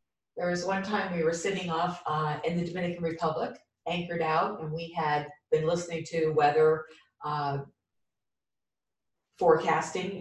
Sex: female